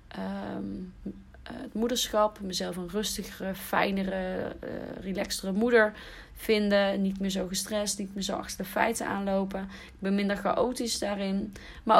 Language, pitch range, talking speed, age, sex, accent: Dutch, 180-225 Hz, 135 wpm, 30-49, female, Dutch